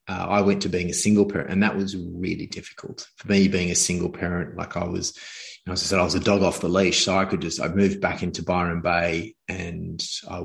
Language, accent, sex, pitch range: English, Australian, male, 90-100 Hz